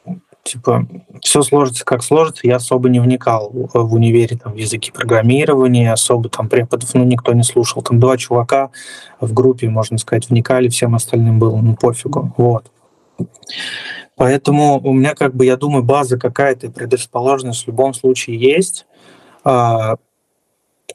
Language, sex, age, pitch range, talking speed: English, male, 20-39, 115-130 Hz, 145 wpm